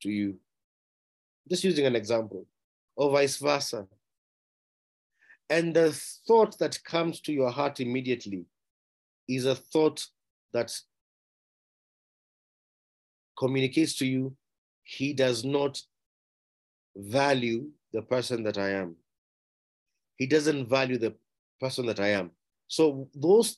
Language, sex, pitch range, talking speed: English, male, 115-150 Hz, 110 wpm